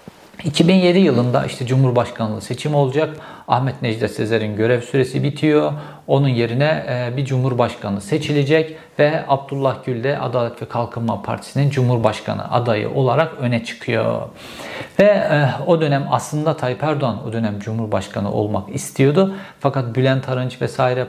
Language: Turkish